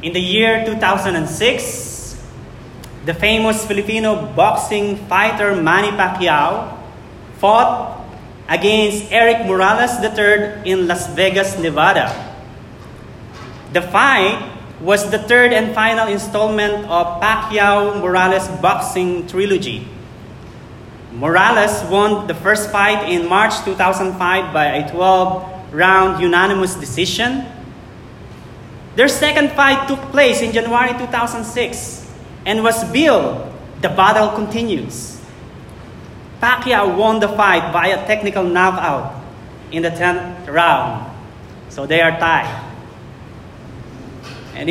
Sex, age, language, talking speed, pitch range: male, 20-39, English, 100 wpm, 150-210 Hz